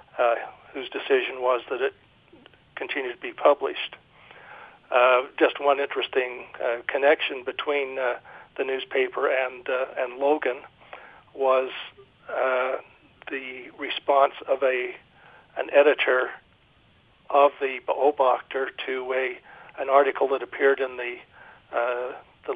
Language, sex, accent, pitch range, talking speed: English, male, American, 130-145 Hz, 120 wpm